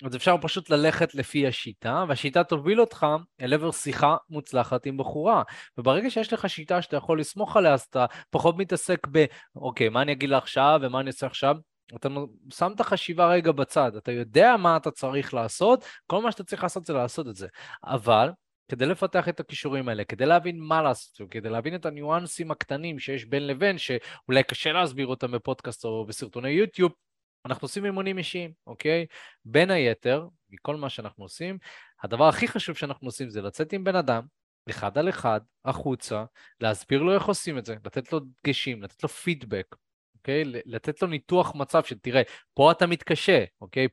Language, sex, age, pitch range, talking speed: Hebrew, male, 20-39, 130-170 Hz, 180 wpm